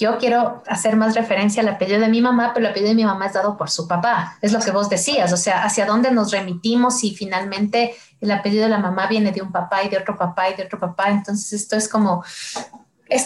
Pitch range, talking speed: 195-245 Hz, 260 wpm